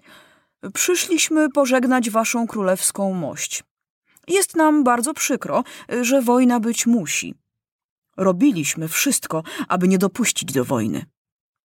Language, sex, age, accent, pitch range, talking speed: Polish, female, 30-49, native, 185-275 Hz, 105 wpm